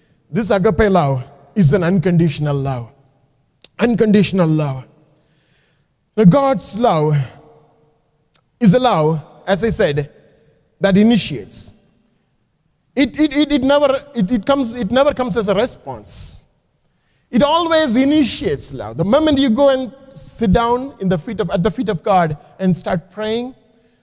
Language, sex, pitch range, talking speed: English, male, 145-200 Hz, 140 wpm